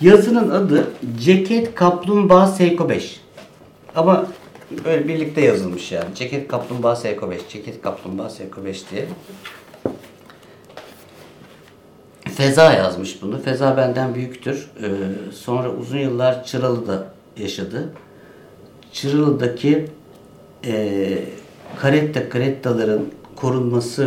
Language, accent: Turkish, native